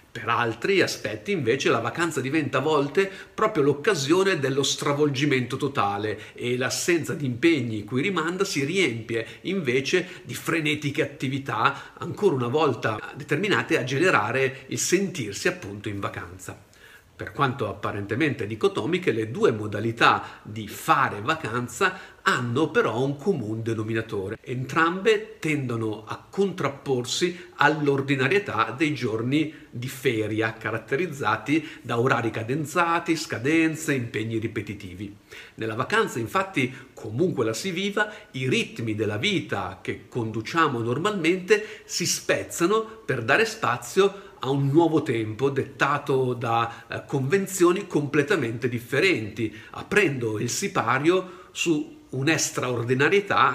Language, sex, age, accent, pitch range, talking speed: Italian, male, 50-69, native, 115-165 Hz, 115 wpm